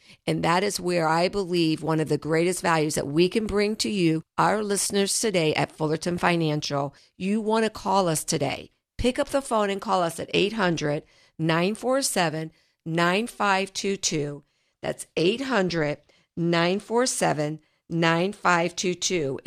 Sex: female